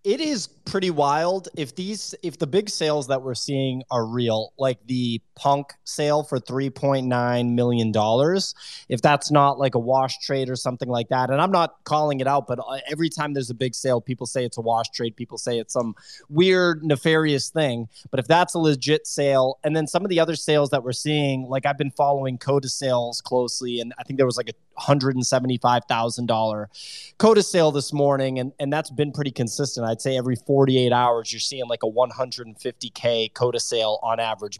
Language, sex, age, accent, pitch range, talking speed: English, male, 20-39, American, 125-155 Hz, 215 wpm